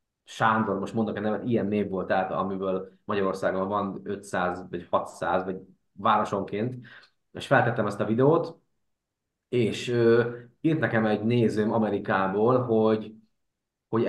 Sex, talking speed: male, 130 wpm